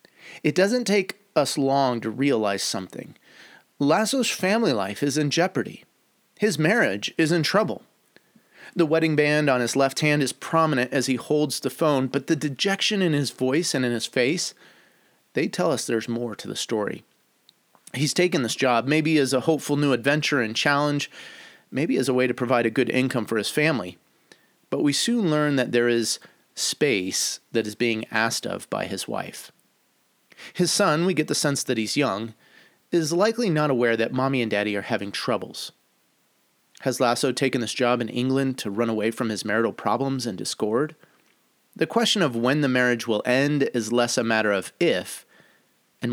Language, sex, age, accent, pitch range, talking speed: English, male, 30-49, American, 120-155 Hz, 185 wpm